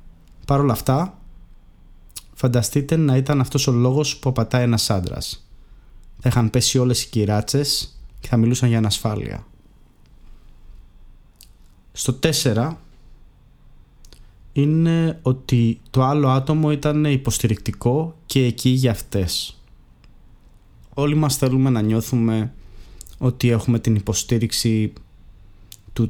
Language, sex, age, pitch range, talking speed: Greek, male, 20-39, 100-135 Hz, 105 wpm